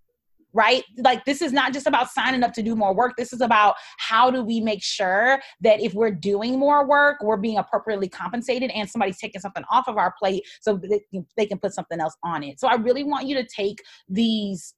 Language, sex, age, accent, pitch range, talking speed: English, female, 30-49, American, 180-230 Hz, 225 wpm